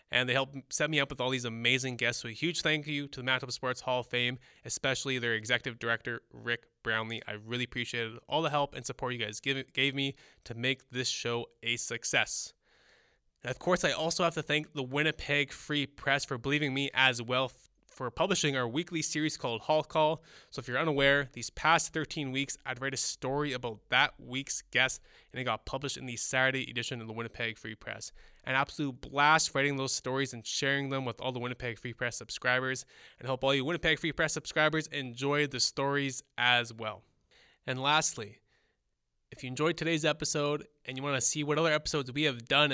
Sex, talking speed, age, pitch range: male, 210 wpm, 20-39, 125-150 Hz